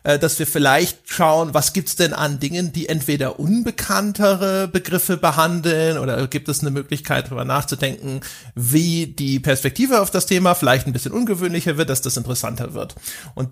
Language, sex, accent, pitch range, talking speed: German, male, German, 145-185 Hz, 170 wpm